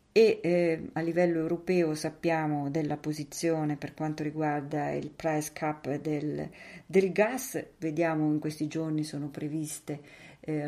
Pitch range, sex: 150-170 Hz, female